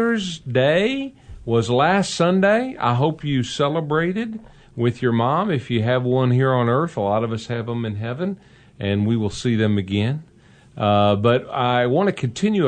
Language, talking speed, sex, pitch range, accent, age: English, 180 wpm, male, 110-140 Hz, American, 50-69